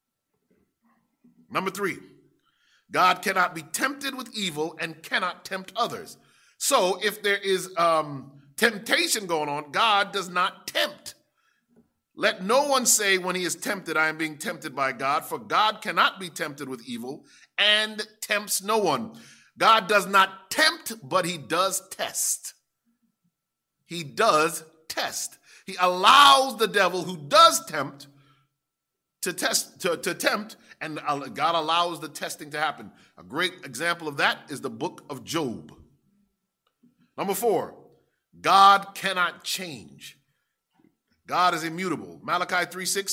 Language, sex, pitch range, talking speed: English, male, 165-210 Hz, 135 wpm